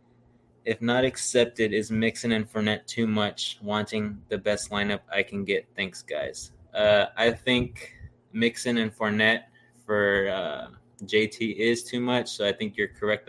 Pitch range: 105-120 Hz